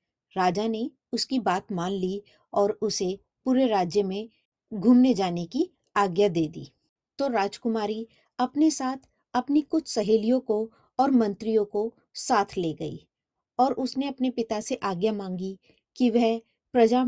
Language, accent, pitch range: Hindi, native, 195-250 Hz